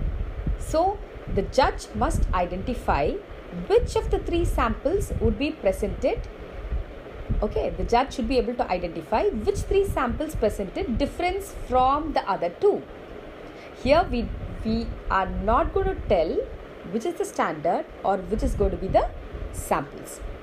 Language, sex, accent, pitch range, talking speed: English, female, Indian, 230-355 Hz, 145 wpm